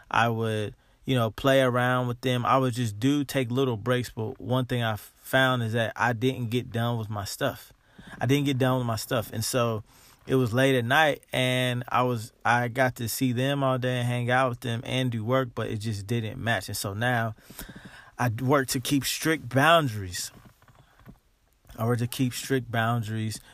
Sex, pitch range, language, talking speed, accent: male, 105-130 Hz, English, 205 wpm, American